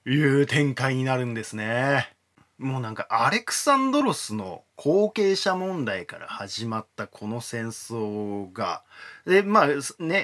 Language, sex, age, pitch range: Japanese, male, 20-39, 115-165 Hz